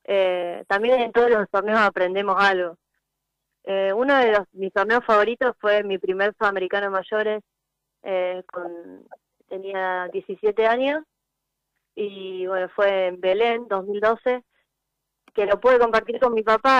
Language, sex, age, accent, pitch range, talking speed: Spanish, female, 20-39, Argentinian, 180-210 Hz, 130 wpm